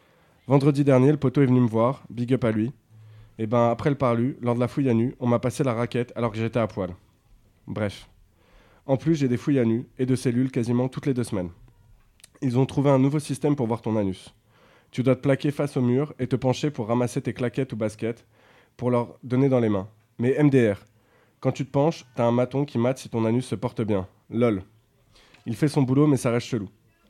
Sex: male